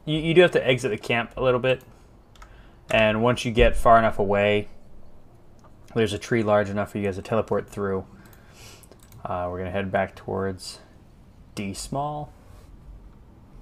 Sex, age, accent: male, 20-39, American